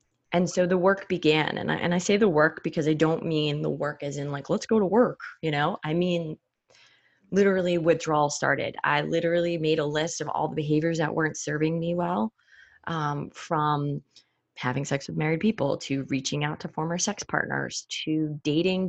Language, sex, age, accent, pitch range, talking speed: English, female, 20-39, American, 145-175 Hz, 195 wpm